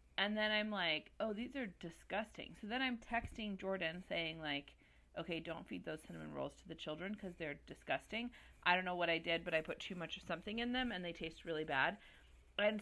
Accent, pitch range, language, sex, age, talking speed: American, 165-220 Hz, English, female, 30-49, 225 wpm